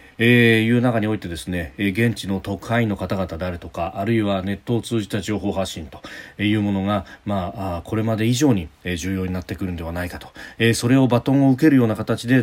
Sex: male